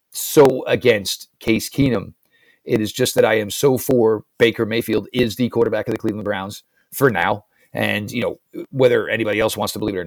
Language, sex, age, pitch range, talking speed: English, male, 50-69, 110-135 Hz, 205 wpm